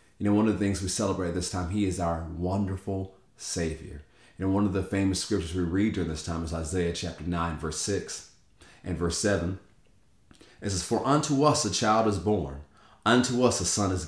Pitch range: 85-110 Hz